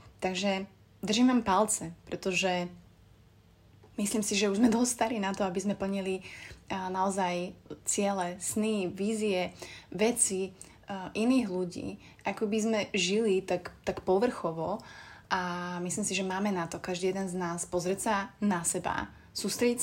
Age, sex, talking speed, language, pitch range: 30-49, female, 135 wpm, Slovak, 180-215 Hz